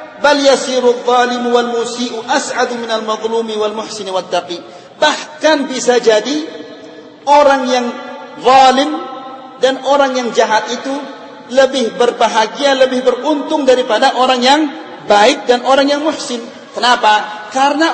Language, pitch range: Indonesian, 235-285 Hz